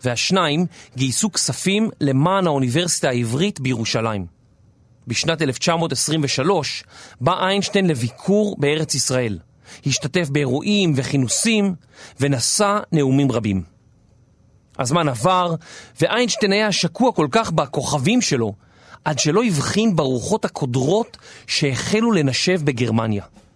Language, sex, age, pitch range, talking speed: Hebrew, male, 40-59, 120-185 Hz, 95 wpm